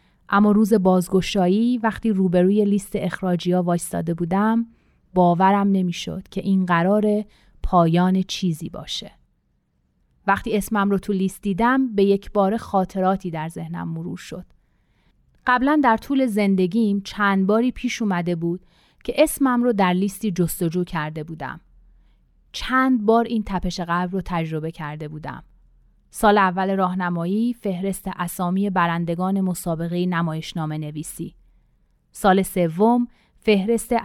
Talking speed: 120 wpm